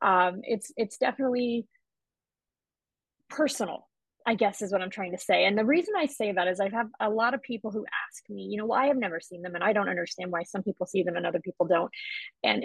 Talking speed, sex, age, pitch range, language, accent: 235 wpm, female, 30-49, 185-235 Hz, English, American